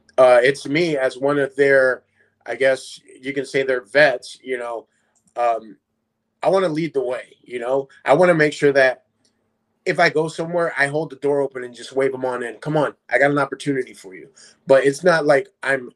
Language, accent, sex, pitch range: English, American, male, 130-155 Hz